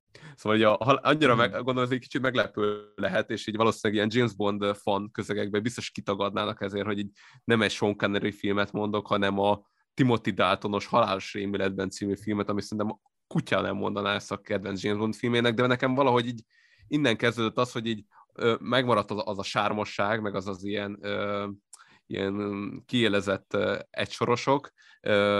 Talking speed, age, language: 170 wpm, 20-39, Hungarian